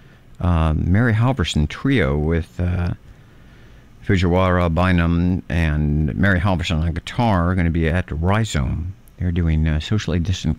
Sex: male